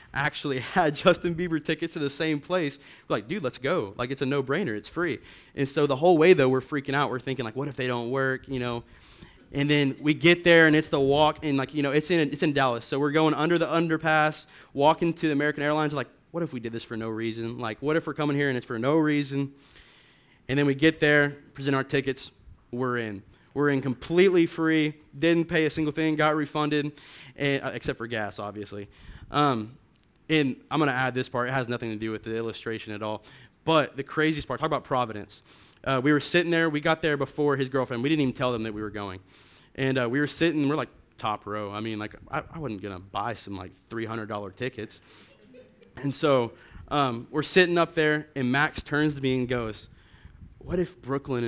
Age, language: 20-39, English